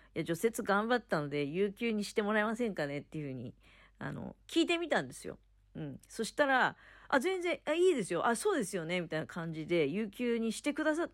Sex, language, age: female, Japanese, 40-59